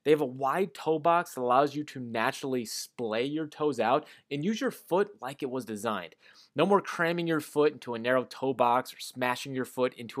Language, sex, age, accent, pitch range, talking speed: English, male, 30-49, American, 120-155 Hz, 225 wpm